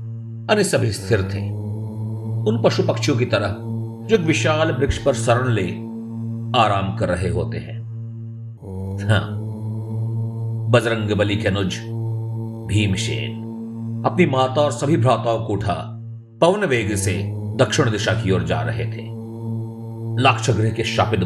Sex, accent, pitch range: male, native, 110-115 Hz